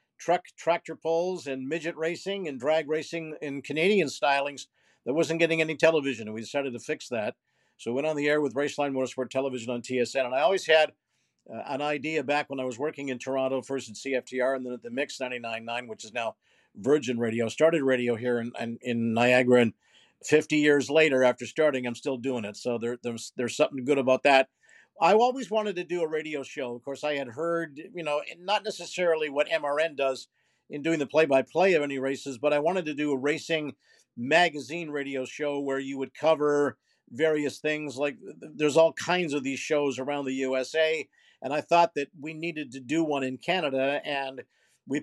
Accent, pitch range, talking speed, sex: American, 130-155 Hz, 200 wpm, male